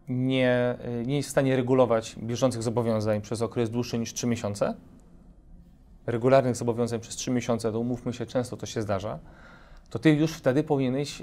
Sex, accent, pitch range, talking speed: male, native, 115-140 Hz, 165 wpm